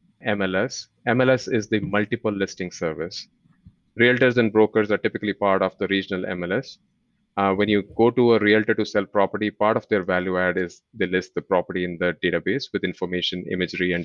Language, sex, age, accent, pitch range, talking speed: English, male, 30-49, Indian, 95-115 Hz, 190 wpm